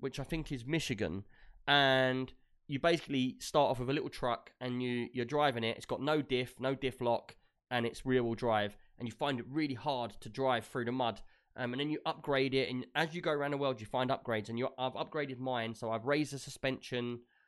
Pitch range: 120-145 Hz